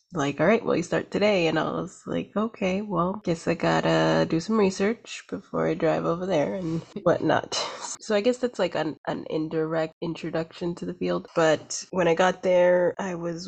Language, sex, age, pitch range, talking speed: English, female, 20-39, 155-185 Hz, 200 wpm